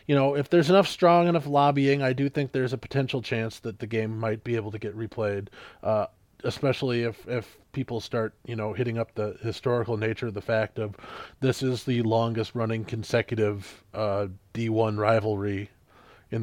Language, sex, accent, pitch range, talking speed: English, male, American, 110-130 Hz, 185 wpm